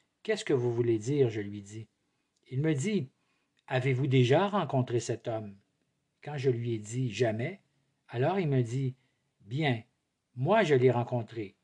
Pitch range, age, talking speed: 125-145 Hz, 50-69, 160 wpm